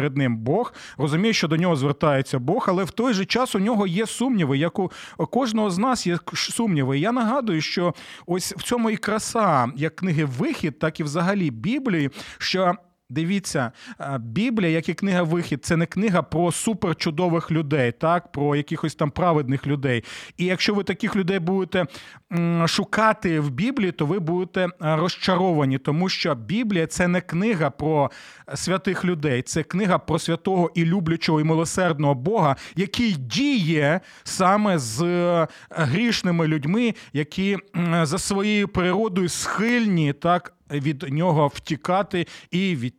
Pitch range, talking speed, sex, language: 160-215 Hz, 150 wpm, male, Ukrainian